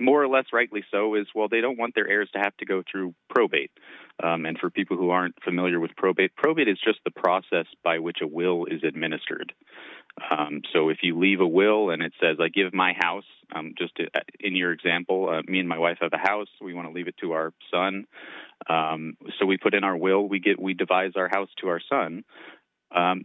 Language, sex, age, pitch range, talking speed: English, male, 30-49, 85-105 Hz, 240 wpm